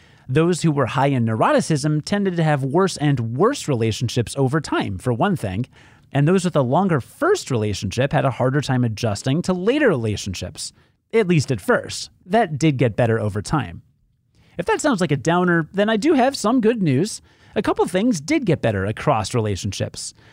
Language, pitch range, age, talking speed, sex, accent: English, 125-200 Hz, 30-49, 190 wpm, male, American